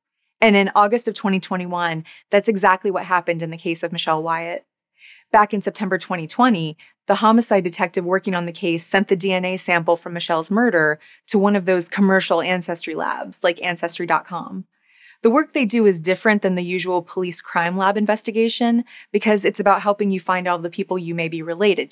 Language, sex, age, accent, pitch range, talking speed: English, female, 20-39, American, 175-205 Hz, 185 wpm